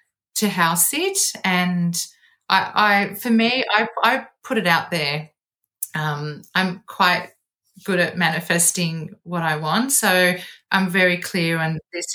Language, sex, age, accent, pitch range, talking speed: English, female, 30-49, Australian, 165-200 Hz, 145 wpm